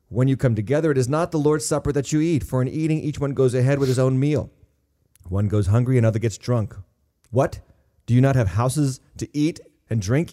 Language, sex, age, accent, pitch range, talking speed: English, male, 30-49, American, 105-140 Hz, 230 wpm